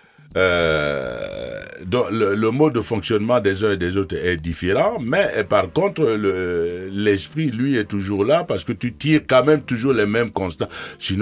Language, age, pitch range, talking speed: French, 60-79, 95-115 Hz, 180 wpm